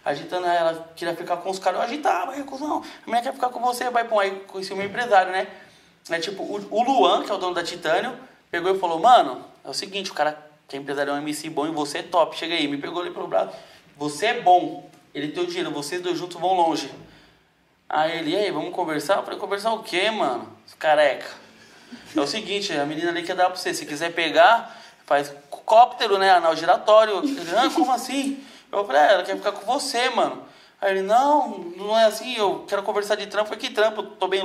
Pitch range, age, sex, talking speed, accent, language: 160-225 Hz, 20-39, male, 230 wpm, Brazilian, Portuguese